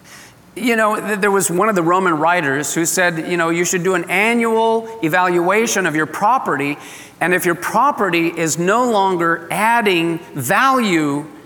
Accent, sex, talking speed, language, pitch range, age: American, male, 160 wpm, English, 160-215 Hz, 40-59